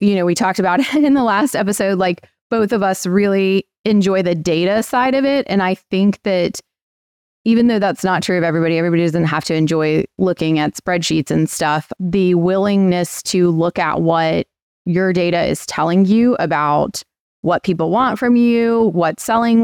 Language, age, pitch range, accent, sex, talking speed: English, 20-39, 170-215 Hz, American, female, 185 wpm